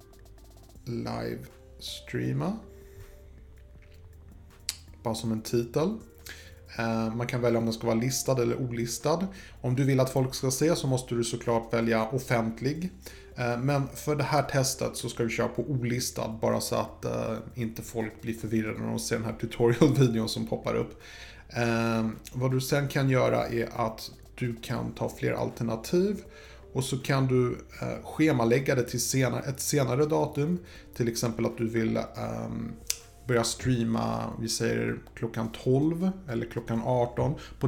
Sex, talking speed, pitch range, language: male, 145 wpm, 115-130 Hz, Swedish